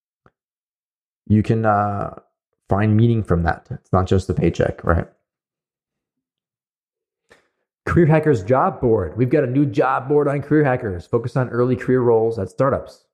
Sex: male